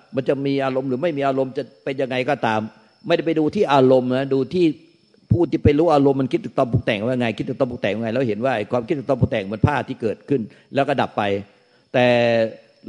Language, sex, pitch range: Thai, male, 115-145 Hz